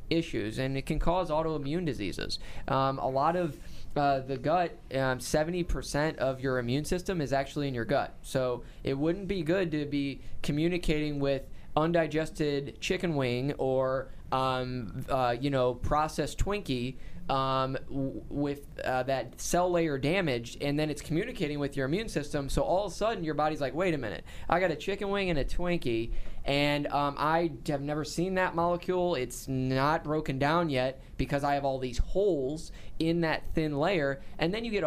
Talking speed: 180 wpm